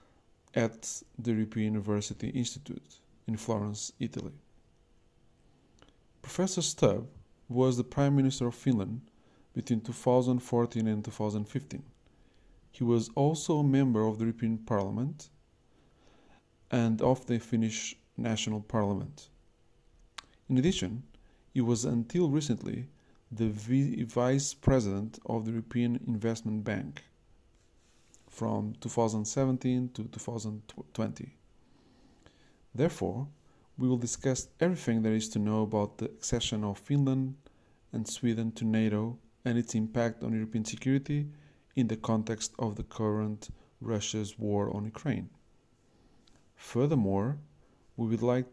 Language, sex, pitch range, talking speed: English, male, 110-125 Hz, 115 wpm